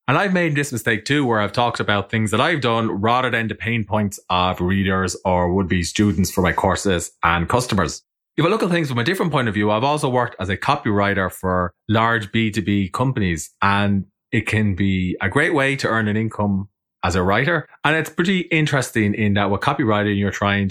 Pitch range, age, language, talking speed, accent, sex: 95-125 Hz, 30-49, English, 215 wpm, Irish, male